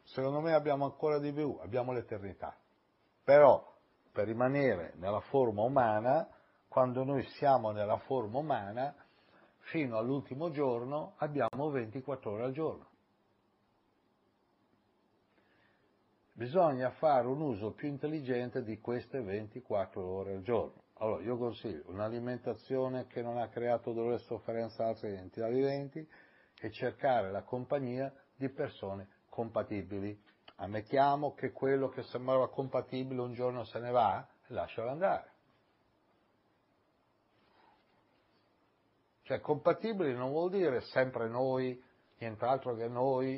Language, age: Italian, 60-79